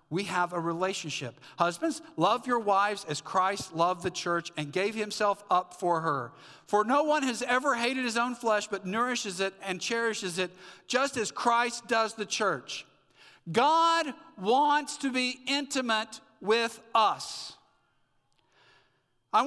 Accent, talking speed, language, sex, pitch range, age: American, 150 wpm, English, male, 170-235 Hz, 50-69